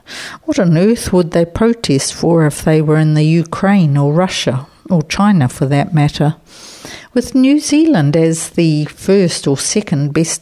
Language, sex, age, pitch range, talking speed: English, female, 60-79, 150-185 Hz, 165 wpm